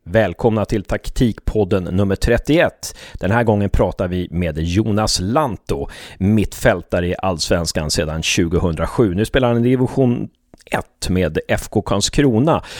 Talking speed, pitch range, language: 125 wpm, 80-105 Hz, Swedish